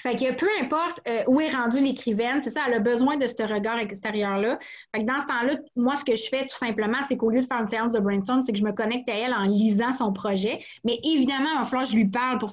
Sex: female